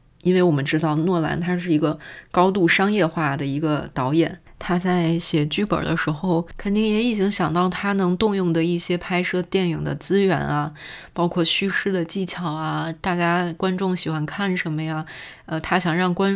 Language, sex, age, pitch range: Chinese, female, 20-39, 155-190 Hz